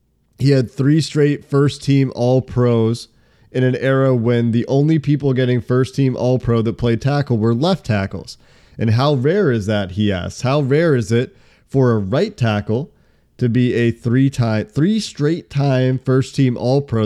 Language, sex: English, male